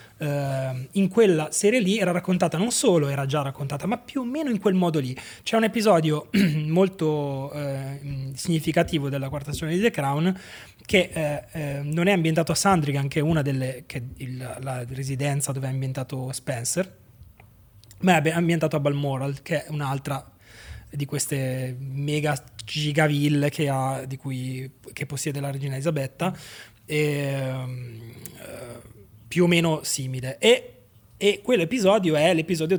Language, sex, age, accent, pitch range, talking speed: Italian, male, 20-39, native, 135-165 Hz, 155 wpm